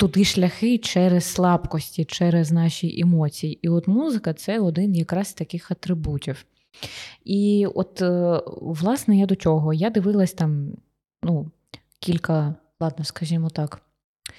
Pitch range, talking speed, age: 160-200 Hz, 125 wpm, 20-39